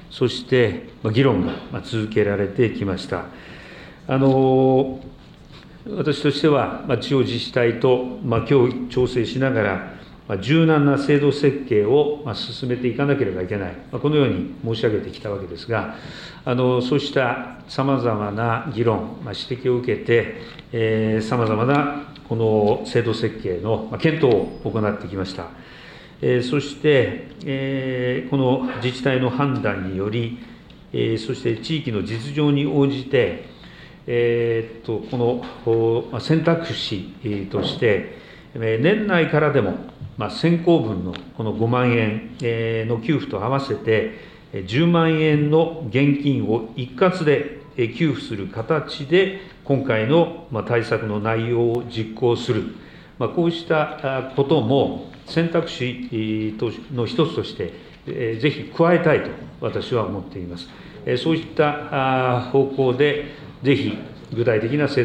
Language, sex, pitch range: Japanese, male, 115-145 Hz